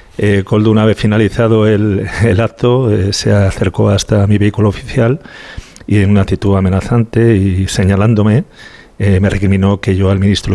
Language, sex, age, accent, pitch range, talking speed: Spanish, male, 40-59, Spanish, 100-110 Hz, 170 wpm